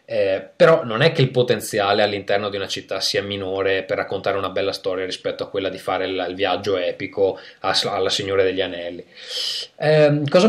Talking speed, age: 195 wpm, 20-39